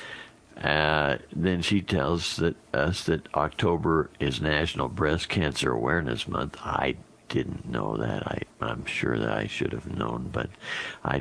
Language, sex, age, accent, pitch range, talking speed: English, male, 60-79, American, 75-100 Hz, 140 wpm